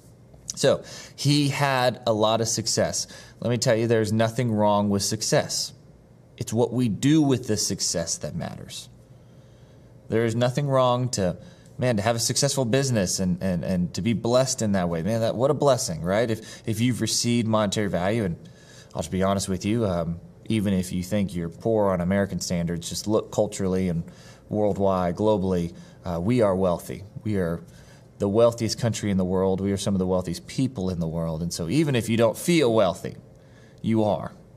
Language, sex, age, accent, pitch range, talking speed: English, male, 20-39, American, 100-125 Hz, 195 wpm